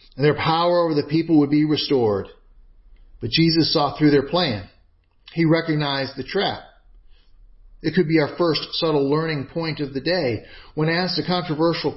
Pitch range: 110-170 Hz